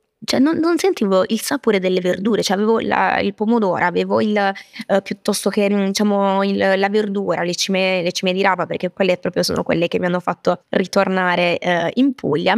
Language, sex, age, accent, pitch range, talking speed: Italian, female, 20-39, native, 180-215 Hz, 195 wpm